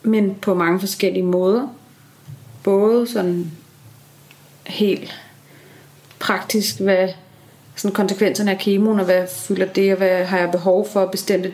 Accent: native